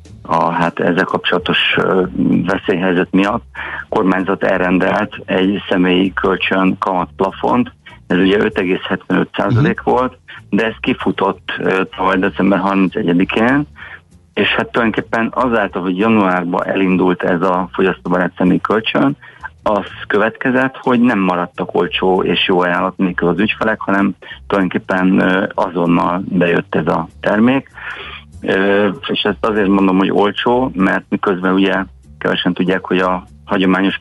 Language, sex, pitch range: Hungarian, male, 90-100 Hz